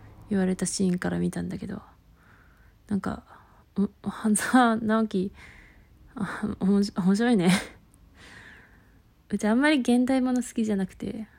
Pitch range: 185-230 Hz